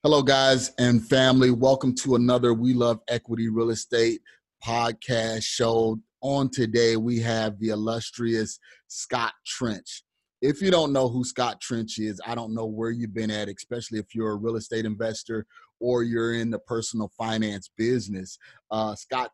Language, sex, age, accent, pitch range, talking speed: English, male, 30-49, American, 110-130 Hz, 165 wpm